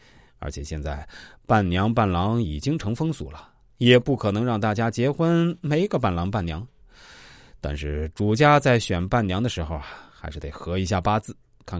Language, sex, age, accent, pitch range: Chinese, male, 20-39, native, 85-130 Hz